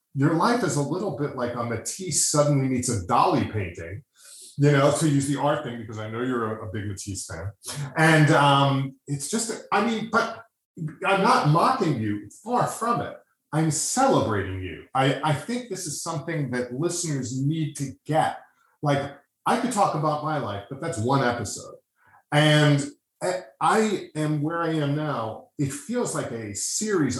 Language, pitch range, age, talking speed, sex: English, 120-160 Hz, 30-49, 175 wpm, male